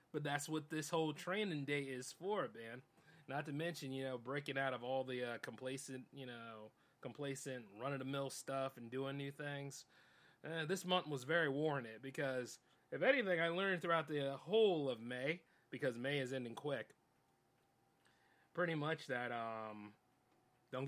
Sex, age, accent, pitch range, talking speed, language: male, 30-49, American, 130-175 Hz, 165 wpm, English